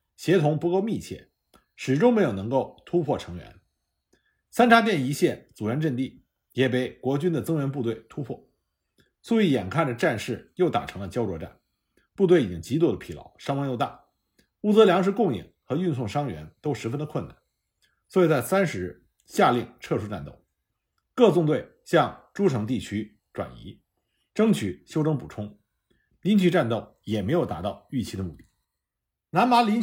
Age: 50-69